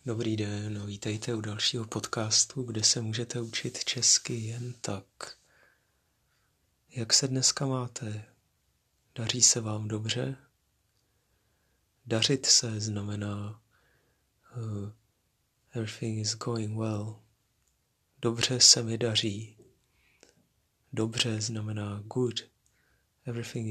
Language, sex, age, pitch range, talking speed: Czech, male, 30-49, 105-120 Hz, 90 wpm